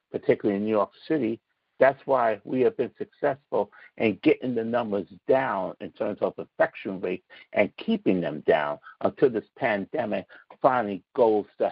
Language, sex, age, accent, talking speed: English, male, 60-79, American, 160 wpm